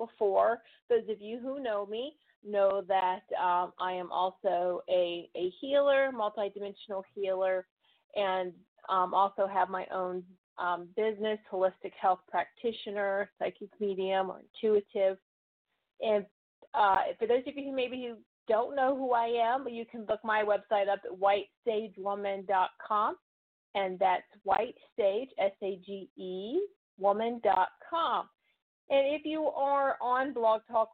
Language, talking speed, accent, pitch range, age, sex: English, 130 wpm, American, 195-230 Hz, 30-49, female